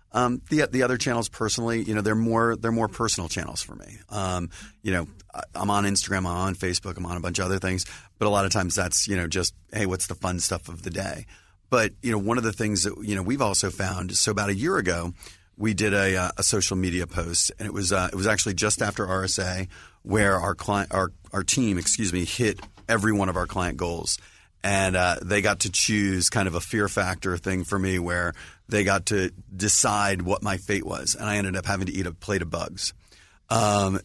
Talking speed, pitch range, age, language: 240 wpm, 90-105 Hz, 30-49, English